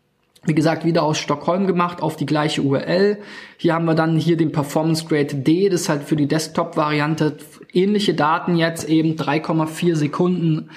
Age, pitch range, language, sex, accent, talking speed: 20-39, 150-180 Hz, German, male, German, 180 wpm